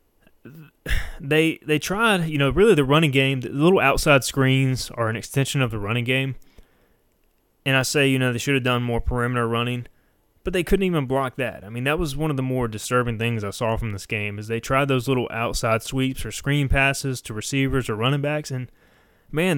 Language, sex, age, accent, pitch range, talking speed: English, male, 20-39, American, 115-145 Hz, 215 wpm